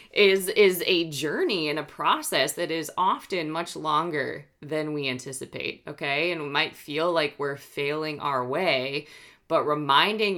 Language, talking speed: English, 155 wpm